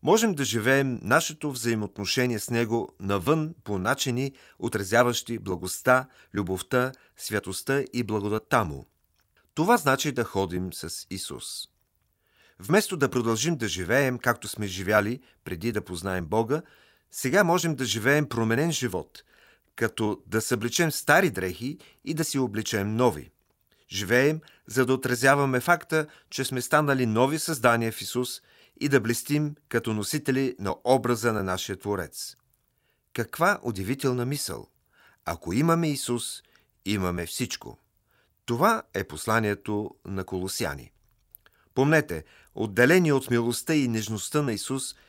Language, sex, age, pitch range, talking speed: Bulgarian, male, 40-59, 105-140 Hz, 125 wpm